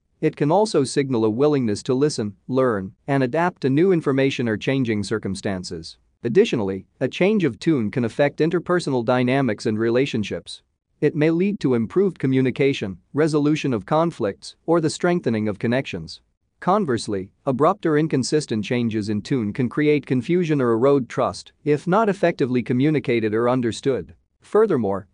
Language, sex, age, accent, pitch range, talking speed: English, male, 40-59, American, 110-150 Hz, 150 wpm